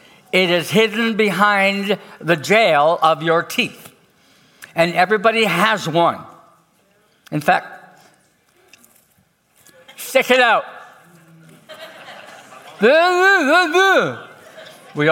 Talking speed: 75 wpm